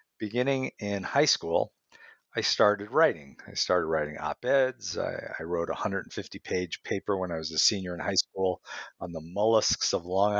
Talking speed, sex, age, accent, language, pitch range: 175 wpm, male, 50-69, American, English, 95-120 Hz